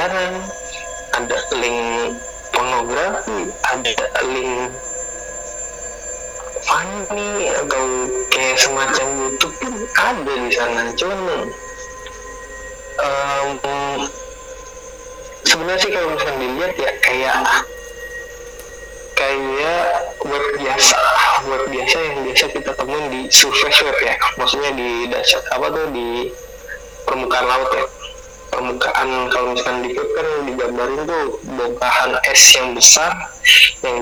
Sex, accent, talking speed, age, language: male, native, 95 wpm, 30-49, Indonesian